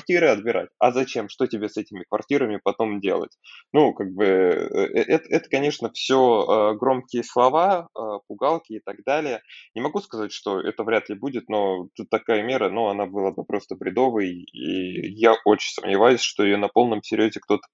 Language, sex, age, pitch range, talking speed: Russian, male, 20-39, 100-125 Hz, 175 wpm